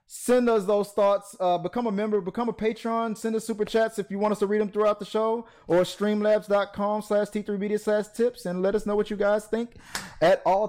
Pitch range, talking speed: 130-205 Hz, 235 wpm